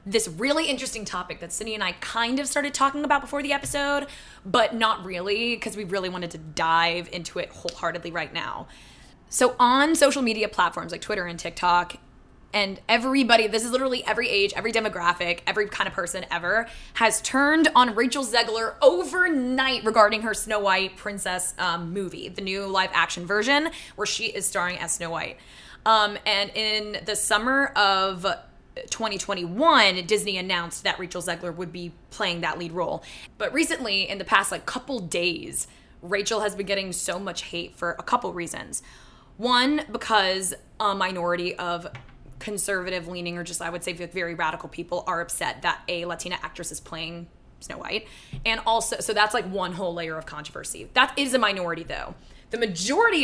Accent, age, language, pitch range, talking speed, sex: American, 20-39, English, 175-230 Hz, 175 wpm, female